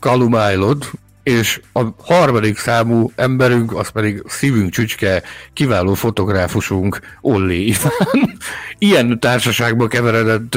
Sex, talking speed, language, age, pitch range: male, 95 wpm, Hungarian, 60-79, 95-120 Hz